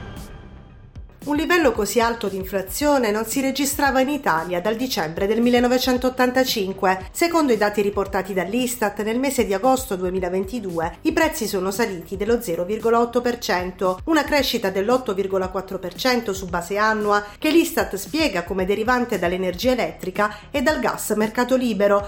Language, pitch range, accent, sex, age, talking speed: Italian, 195-250 Hz, native, female, 40-59, 135 wpm